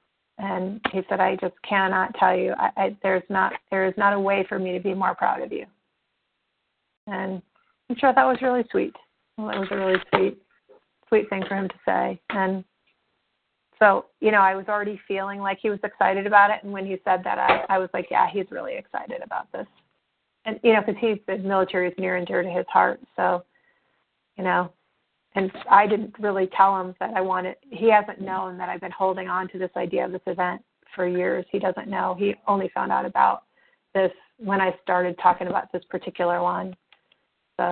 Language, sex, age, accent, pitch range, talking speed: English, female, 30-49, American, 185-205 Hz, 210 wpm